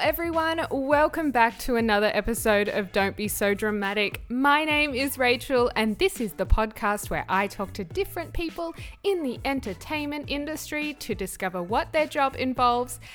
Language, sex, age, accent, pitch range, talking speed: English, female, 20-39, Australian, 180-220 Hz, 165 wpm